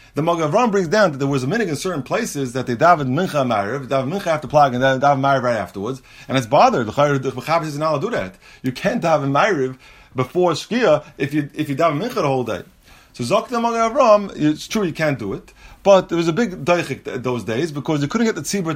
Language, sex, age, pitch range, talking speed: English, male, 30-49, 135-190 Hz, 250 wpm